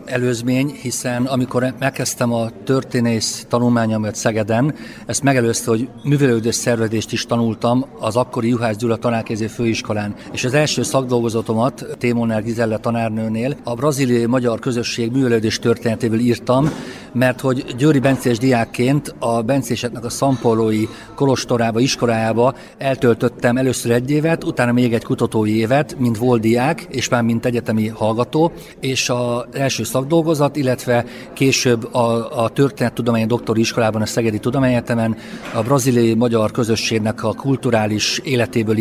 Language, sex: Hungarian, male